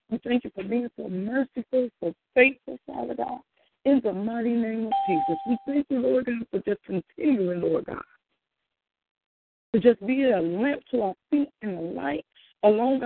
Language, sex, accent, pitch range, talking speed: English, female, American, 215-265 Hz, 180 wpm